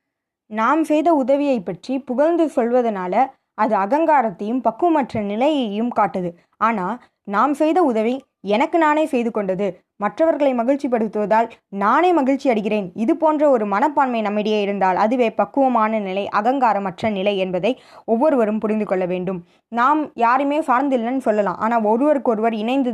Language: Tamil